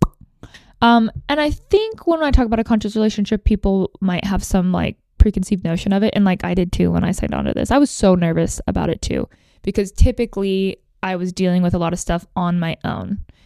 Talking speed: 230 wpm